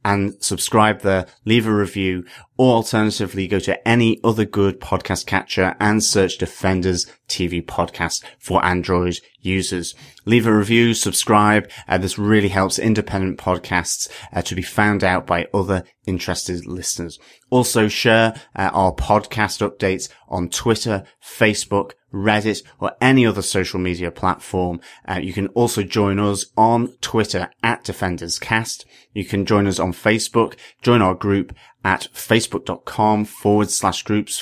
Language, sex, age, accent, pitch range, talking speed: English, male, 30-49, British, 95-110 Hz, 145 wpm